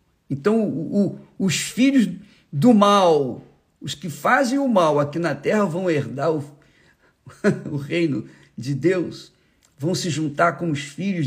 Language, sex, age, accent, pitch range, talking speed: Portuguese, male, 50-69, Brazilian, 140-185 Hz, 140 wpm